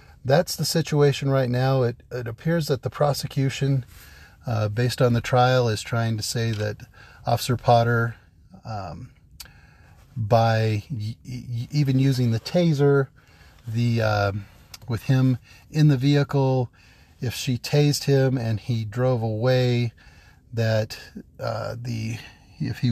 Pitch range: 105-125 Hz